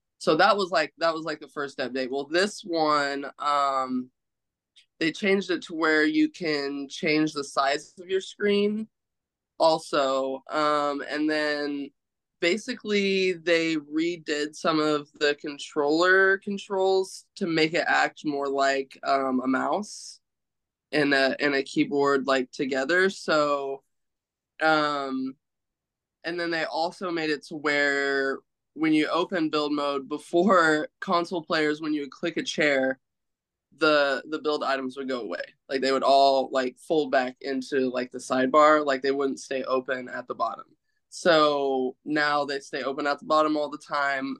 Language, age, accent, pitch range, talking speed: English, 20-39, American, 135-155 Hz, 155 wpm